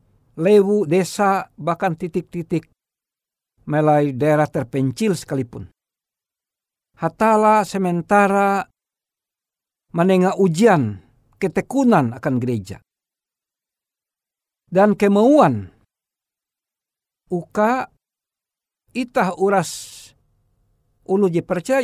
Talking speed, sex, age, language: 60 wpm, male, 60-79, Indonesian